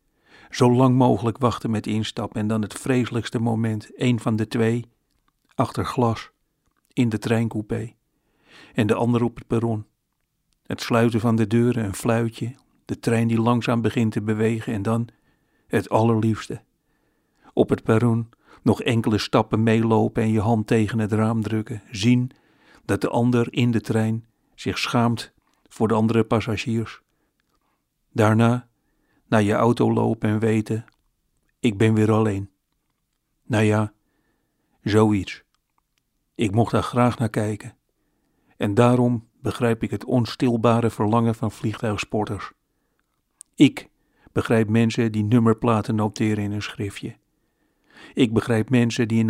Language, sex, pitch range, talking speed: Dutch, male, 110-120 Hz, 140 wpm